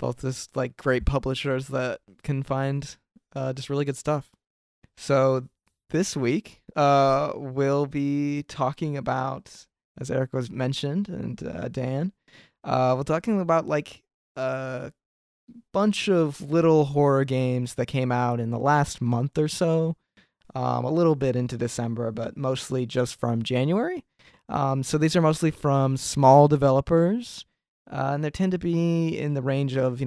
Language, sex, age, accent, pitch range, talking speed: English, male, 20-39, American, 125-150 Hz, 155 wpm